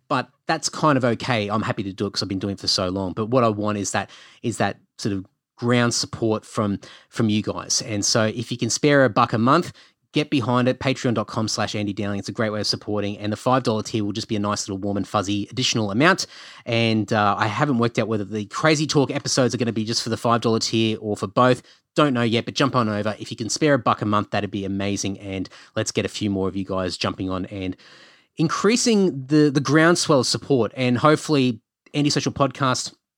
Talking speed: 245 wpm